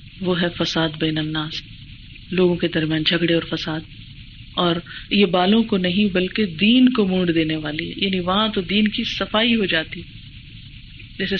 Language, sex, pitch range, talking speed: Urdu, female, 160-210 Hz, 165 wpm